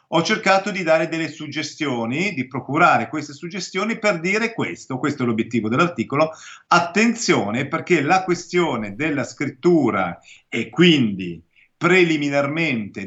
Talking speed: 120 wpm